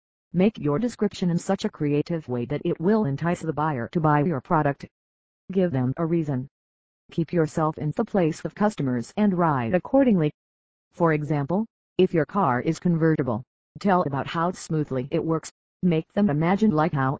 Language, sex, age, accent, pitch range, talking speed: English, female, 40-59, American, 140-180 Hz, 175 wpm